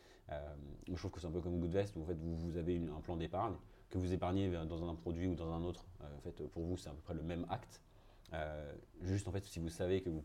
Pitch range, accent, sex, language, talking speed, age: 80-95 Hz, French, male, French, 285 wpm, 30-49